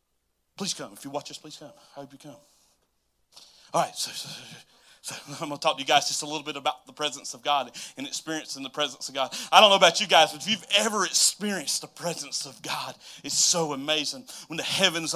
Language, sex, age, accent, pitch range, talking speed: English, male, 30-49, American, 145-180 Hz, 225 wpm